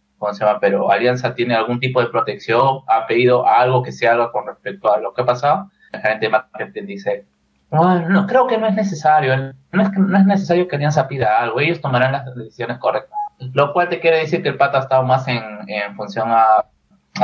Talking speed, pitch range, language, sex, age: 225 wpm, 115-150 Hz, Spanish, male, 20-39